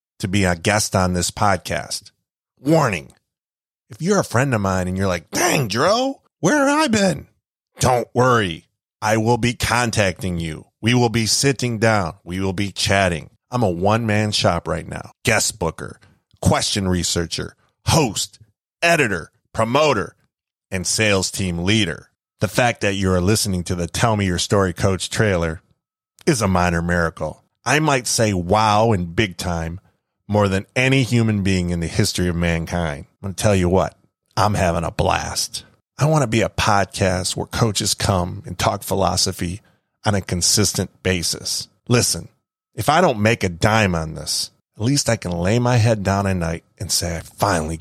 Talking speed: 175 wpm